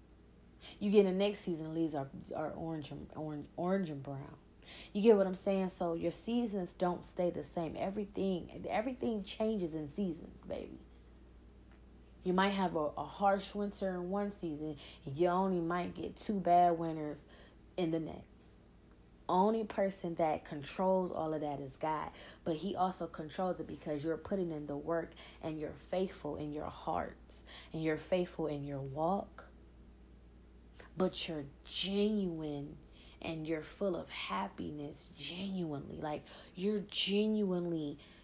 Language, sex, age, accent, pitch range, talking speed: English, female, 30-49, American, 150-185 Hz, 155 wpm